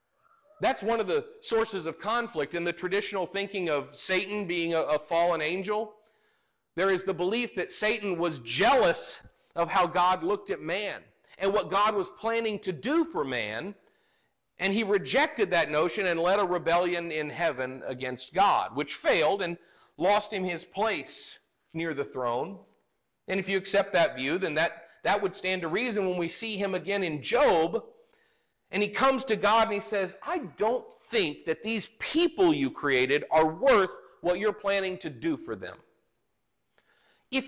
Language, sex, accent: English, male, American